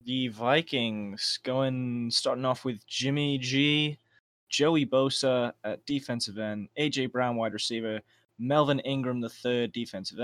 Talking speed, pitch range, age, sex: 130 wpm, 110-130 Hz, 20-39, male